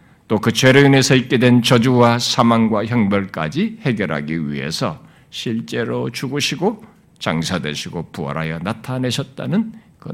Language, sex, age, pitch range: Korean, male, 50-69, 115-165 Hz